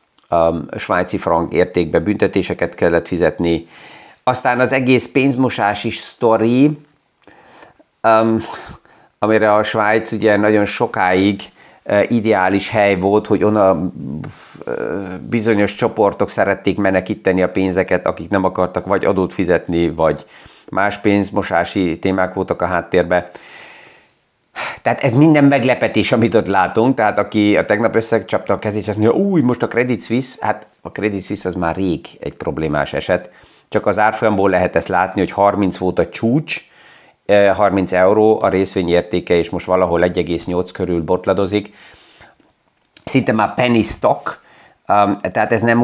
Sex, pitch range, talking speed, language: male, 95-115 Hz, 125 wpm, Hungarian